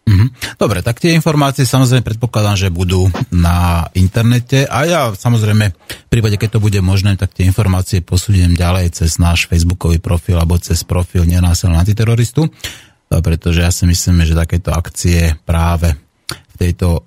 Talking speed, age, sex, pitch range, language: 155 wpm, 30-49, male, 85-105 Hz, Slovak